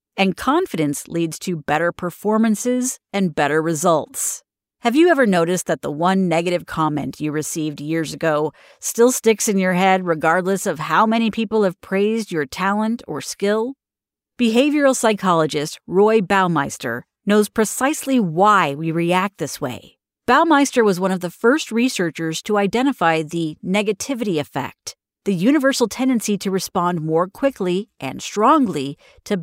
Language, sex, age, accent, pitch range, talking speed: English, female, 40-59, American, 165-220 Hz, 145 wpm